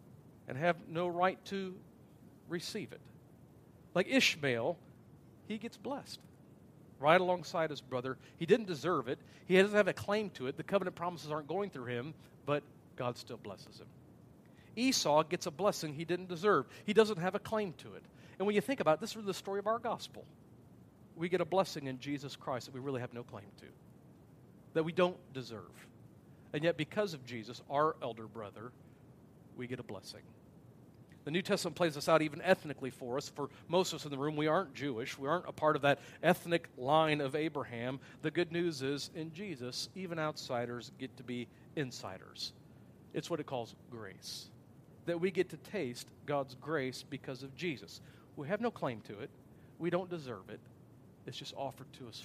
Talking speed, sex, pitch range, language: 195 wpm, male, 125-175 Hz, English